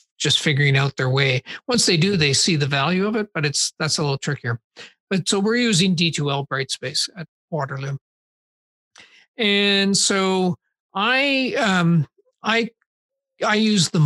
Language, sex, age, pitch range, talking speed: English, male, 50-69, 145-190 Hz, 155 wpm